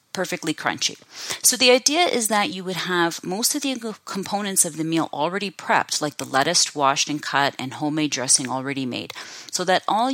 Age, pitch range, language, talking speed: 30-49, 155-210 Hz, English, 195 wpm